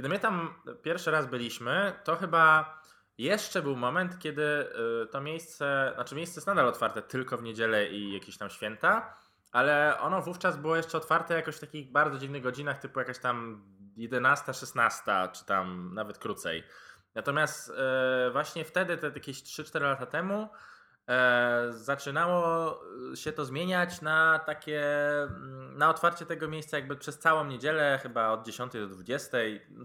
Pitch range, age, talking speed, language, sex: 125-160 Hz, 20-39, 150 wpm, English, male